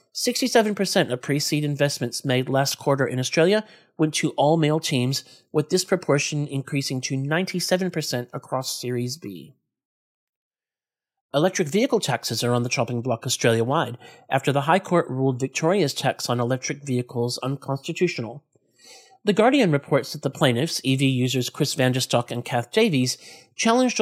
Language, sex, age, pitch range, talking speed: English, male, 40-59, 125-170 Hz, 135 wpm